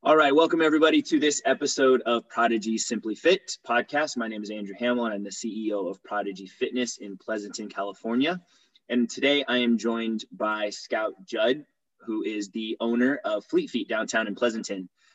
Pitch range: 110-130 Hz